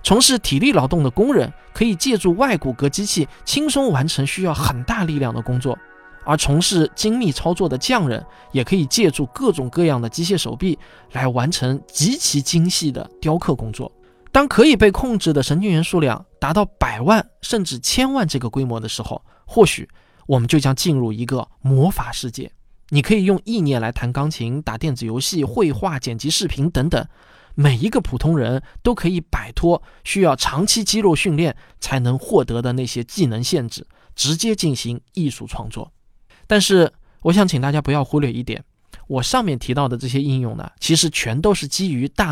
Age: 20-39